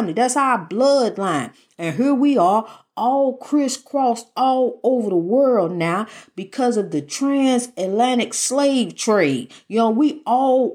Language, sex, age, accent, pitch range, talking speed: English, female, 40-59, American, 225-285 Hz, 135 wpm